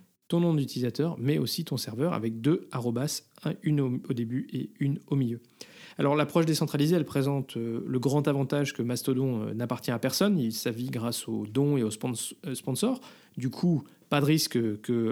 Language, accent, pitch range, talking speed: French, French, 125-155 Hz, 200 wpm